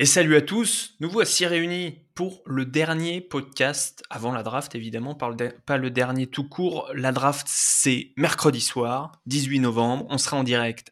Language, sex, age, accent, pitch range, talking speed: French, male, 20-39, French, 120-145 Hz, 170 wpm